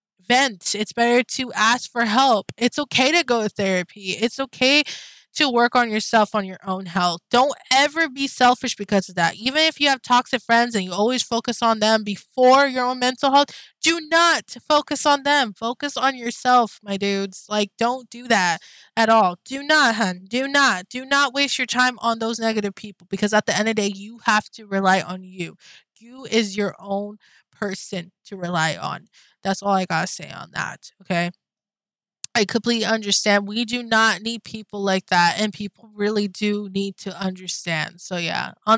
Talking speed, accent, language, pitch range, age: 195 wpm, American, English, 205-265 Hz, 20-39